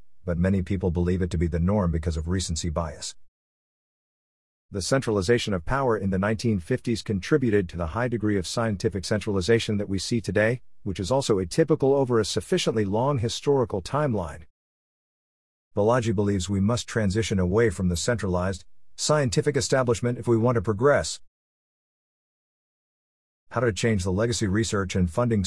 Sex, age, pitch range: male, 50-69, 90-120 Hz